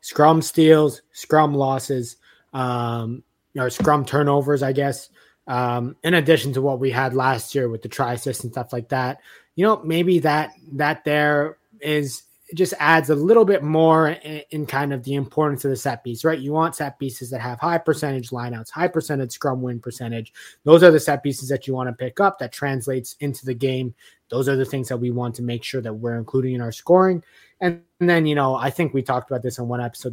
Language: English